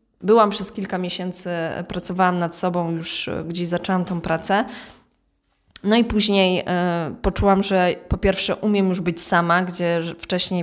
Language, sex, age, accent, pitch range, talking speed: Polish, female, 20-39, native, 165-185 Hz, 145 wpm